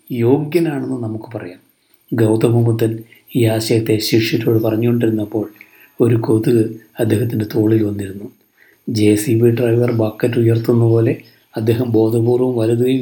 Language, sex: Malayalam, male